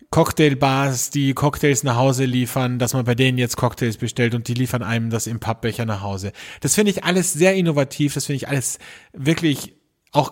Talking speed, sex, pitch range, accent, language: 200 wpm, male, 130-160 Hz, German, German